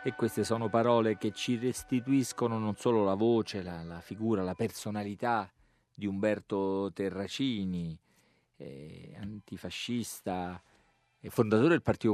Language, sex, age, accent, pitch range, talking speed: Italian, male, 40-59, native, 90-115 Hz, 125 wpm